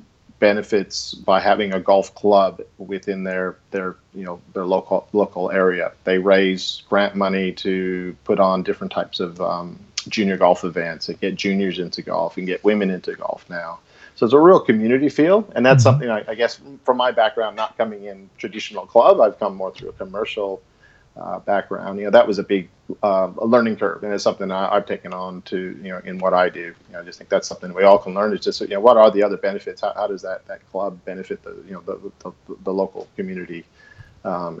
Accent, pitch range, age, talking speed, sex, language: American, 95-110 Hz, 40-59, 220 wpm, male, English